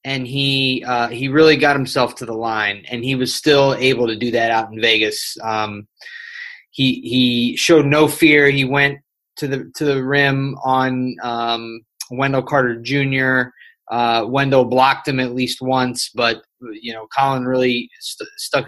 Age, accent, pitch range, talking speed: 20-39, American, 120-140 Hz, 170 wpm